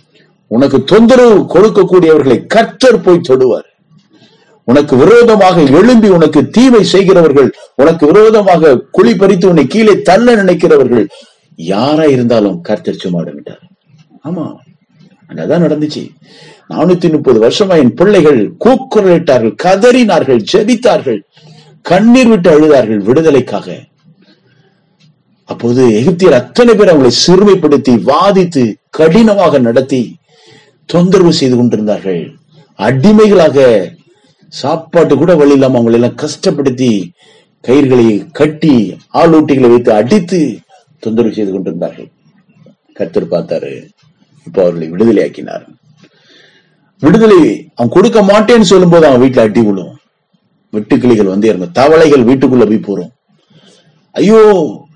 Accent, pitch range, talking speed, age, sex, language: native, 135-200 Hz, 90 wpm, 50-69, male, Tamil